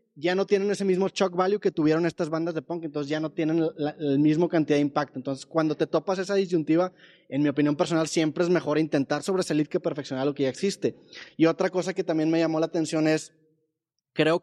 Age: 20-39